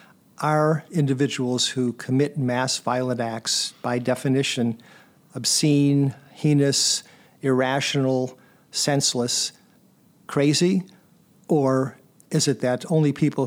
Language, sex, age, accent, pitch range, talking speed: English, male, 50-69, American, 120-140 Hz, 90 wpm